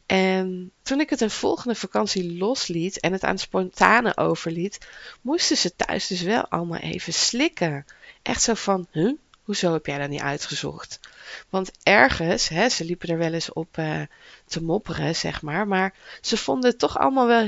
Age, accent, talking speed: 20-39, Dutch, 180 wpm